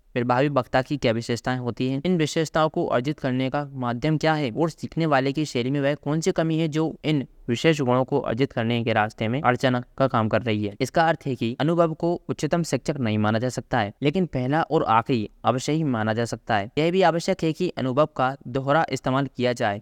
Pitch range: 120-150 Hz